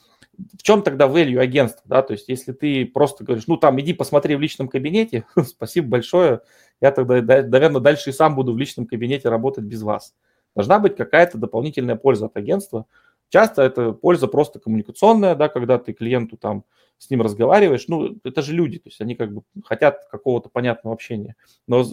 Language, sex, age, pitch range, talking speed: Russian, male, 30-49, 120-150 Hz, 185 wpm